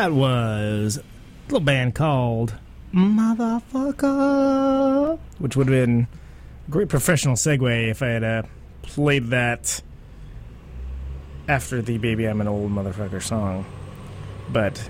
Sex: male